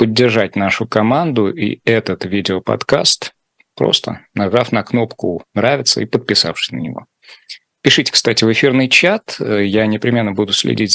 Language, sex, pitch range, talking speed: Russian, male, 105-120 Hz, 130 wpm